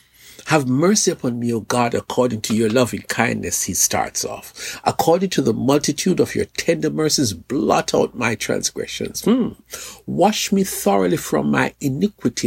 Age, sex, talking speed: 60-79, male, 160 wpm